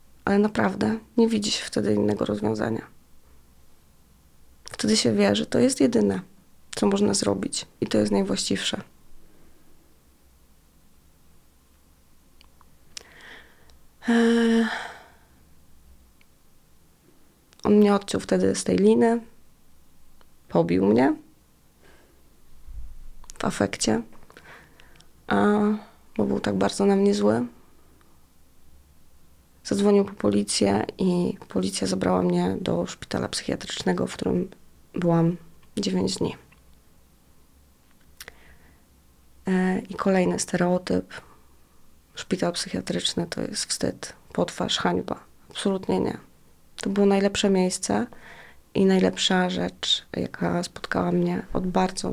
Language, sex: Polish, female